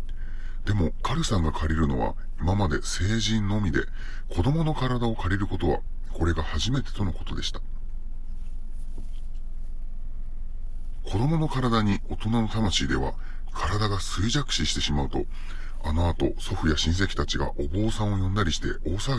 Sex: female